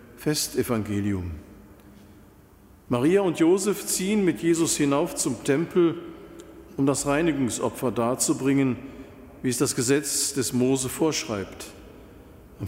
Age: 50-69